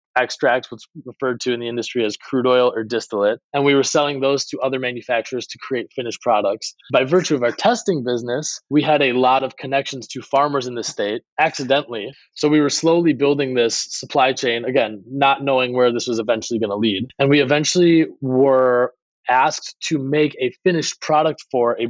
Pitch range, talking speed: 125-145 Hz, 195 wpm